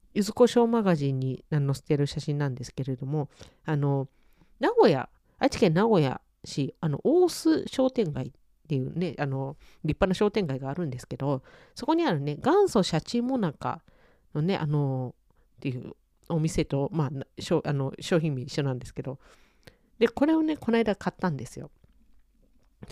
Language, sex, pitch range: Japanese, female, 140-195 Hz